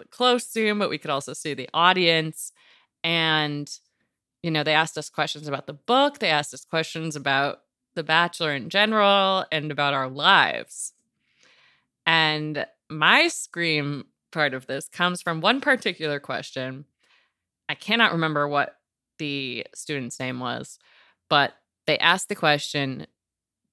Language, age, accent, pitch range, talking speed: English, 20-39, American, 140-175 Hz, 140 wpm